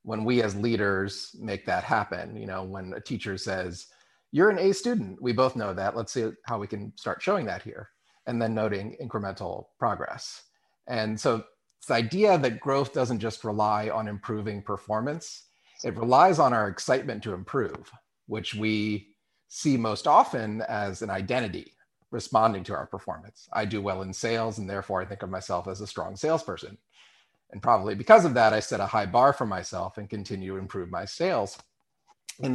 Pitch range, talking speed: 100-120 Hz, 185 wpm